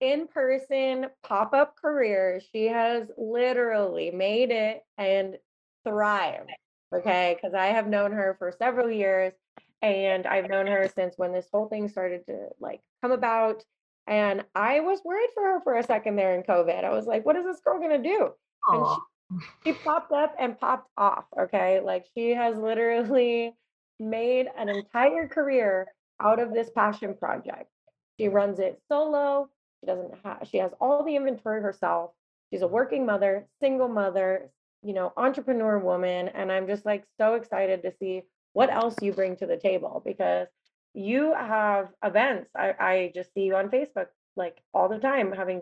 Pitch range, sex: 195-255 Hz, female